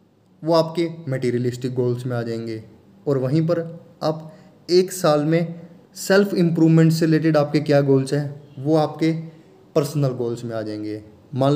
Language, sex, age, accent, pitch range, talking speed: Hindi, male, 20-39, native, 125-160 Hz, 155 wpm